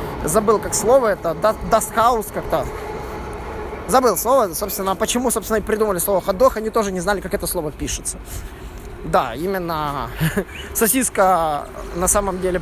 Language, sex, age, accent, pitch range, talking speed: Russian, male, 20-39, native, 185-240 Hz, 140 wpm